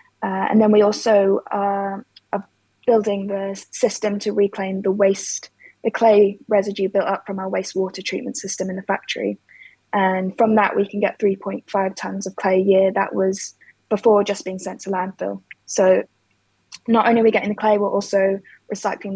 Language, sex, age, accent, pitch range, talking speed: English, female, 10-29, British, 195-210 Hz, 180 wpm